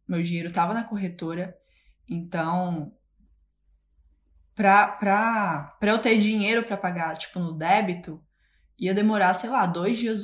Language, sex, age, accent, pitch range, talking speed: Portuguese, female, 20-39, Brazilian, 170-210 Hz, 135 wpm